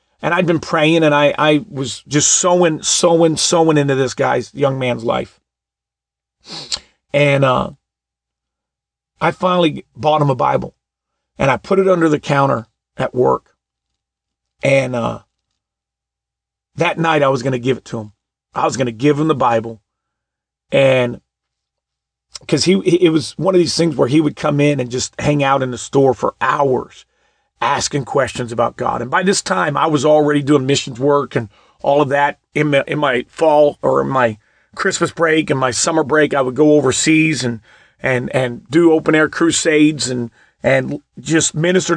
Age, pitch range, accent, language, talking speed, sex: 40-59, 130-165 Hz, American, English, 175 wpm, male